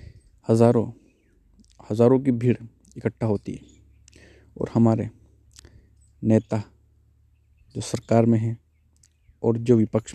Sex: male